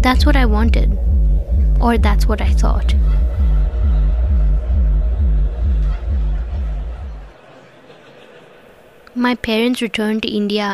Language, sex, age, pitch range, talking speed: English, female, 20-39, 180-235 Hz, 80 wpm